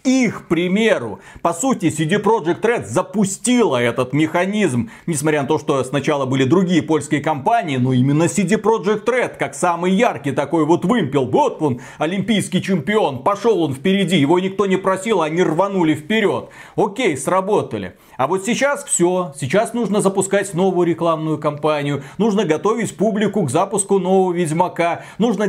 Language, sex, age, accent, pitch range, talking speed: Russian, male, 30-49, native, 160-215 Hz, 155 wpm